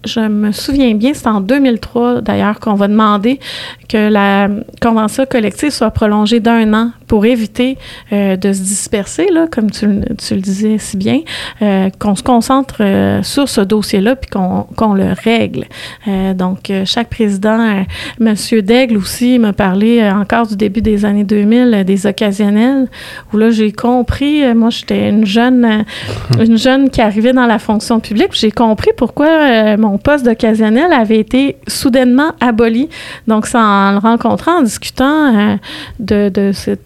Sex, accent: female, Canadian